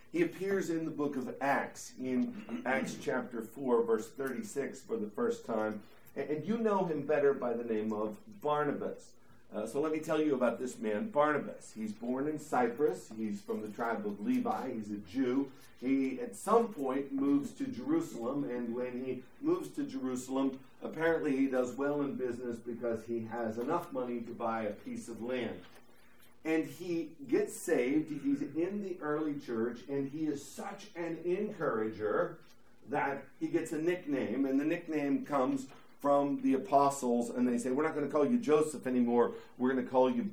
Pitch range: 125-175 Hz